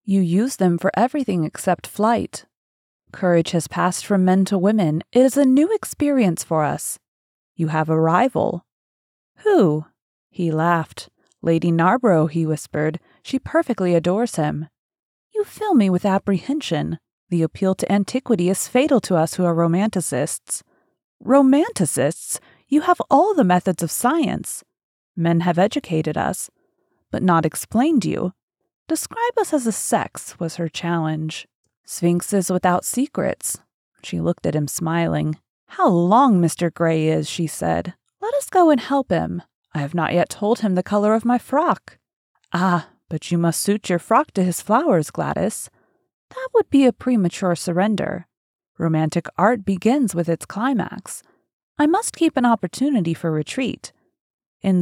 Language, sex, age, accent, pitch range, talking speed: English, female, 30-49, American, 170-245 Hz, 155 wpm